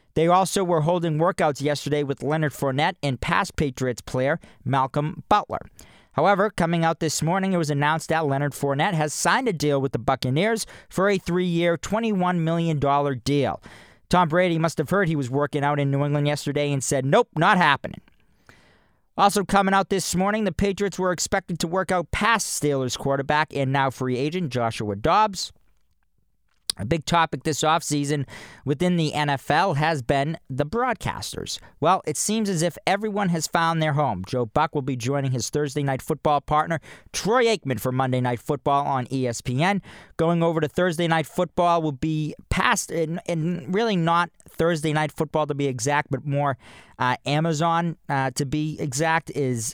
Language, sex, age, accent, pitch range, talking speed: English, male, 40-59, American, 140-175 Hz, 175 wpm